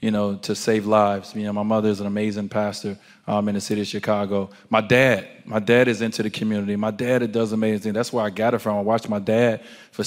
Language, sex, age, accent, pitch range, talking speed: English, male, 20-39, American, 105-120 Hz, 255 wpm